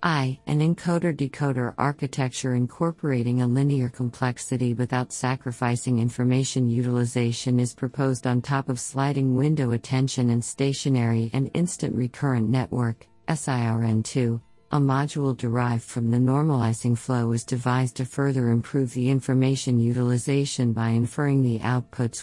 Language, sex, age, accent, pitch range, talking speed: English, female, 50-69, American, 125-140 Hz, 125 wpm